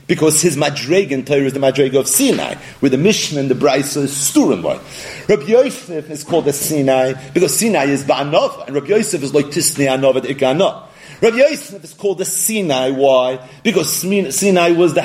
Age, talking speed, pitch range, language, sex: 40-59, 185 wpm, 135-175 Hz, English, male